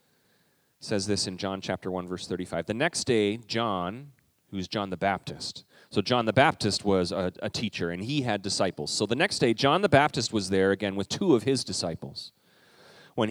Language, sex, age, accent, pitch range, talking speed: English, male, 30-49, American, 95-125 Hz, 200 wpm